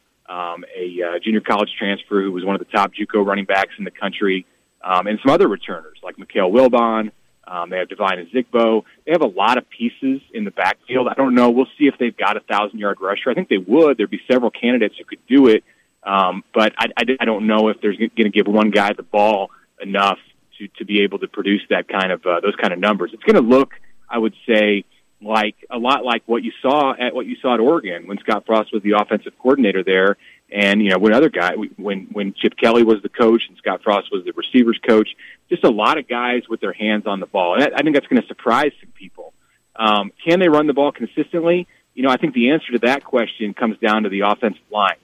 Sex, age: male, 30-49